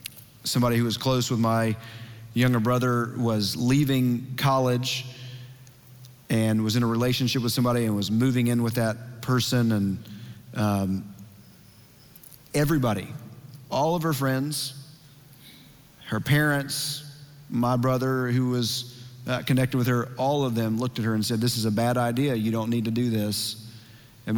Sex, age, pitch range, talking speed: male, 40-59, 115-130 Hz, 155 wpm